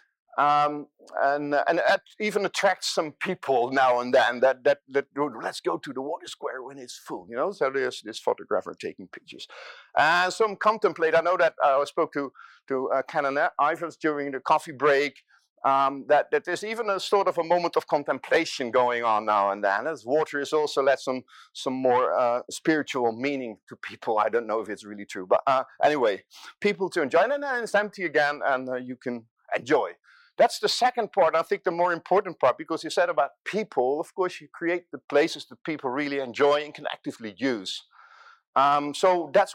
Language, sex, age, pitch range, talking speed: English, male, 50-69, 130-175 Hz, 210 wpm